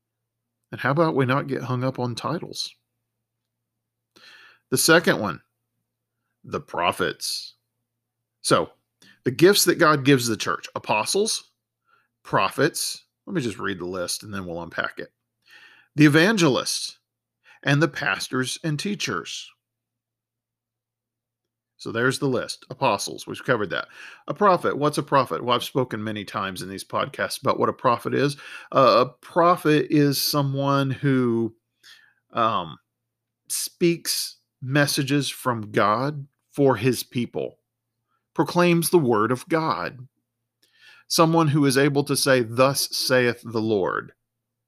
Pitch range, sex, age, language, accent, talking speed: 115-145 Hz, male, 40-59, English, American, 130 wpm